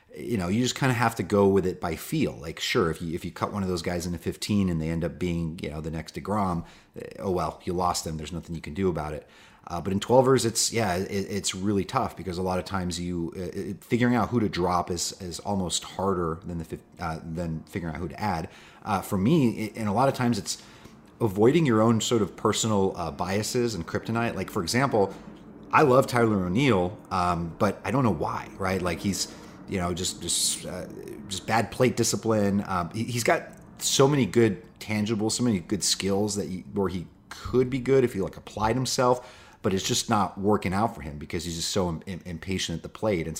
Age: 30-49